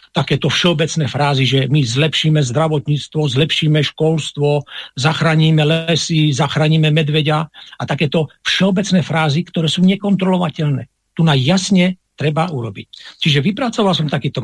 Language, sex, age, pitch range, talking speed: Slovak, male, 50-69, 140-190 Hz, 115 wpm